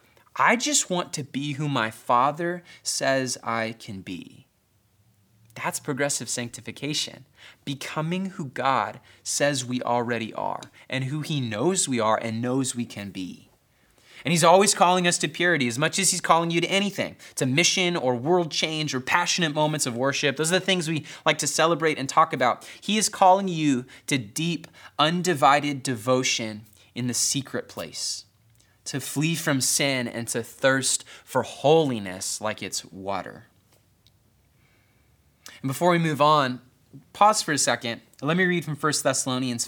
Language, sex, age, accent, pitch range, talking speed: English, male, 20-39, American, 115-155 Hz, 165 wpm